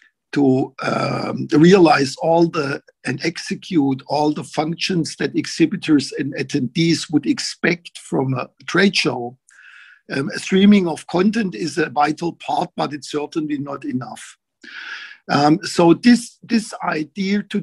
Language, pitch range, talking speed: English, 145-185 Hz, 135 wpm